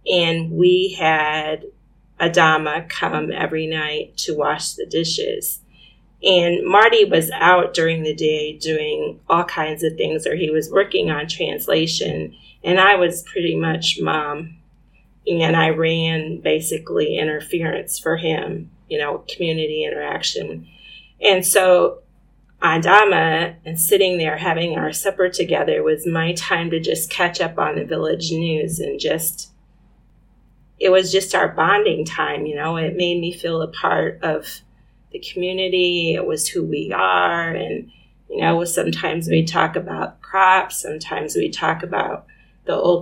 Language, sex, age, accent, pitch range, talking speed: English, female, 30-49, American, 160-185 Hz, 145 wpm